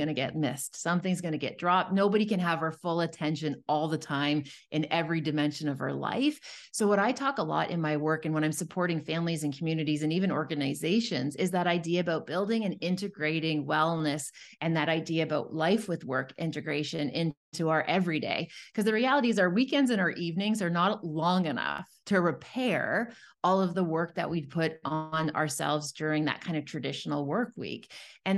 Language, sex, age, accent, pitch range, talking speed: English, female, 30-49, American, 155-200 Hz, 200 wpm